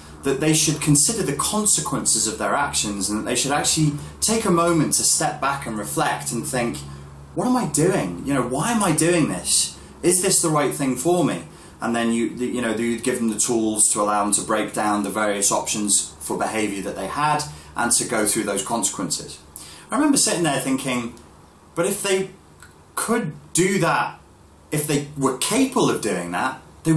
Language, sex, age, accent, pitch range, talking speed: English, male, 30-49, British, 100-160 Hz, 205 wpm